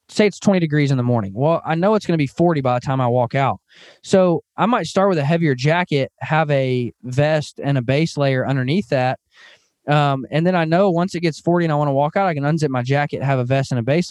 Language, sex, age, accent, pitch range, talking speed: English, male, 20-39, American, 130-160 Hz, 270 wpm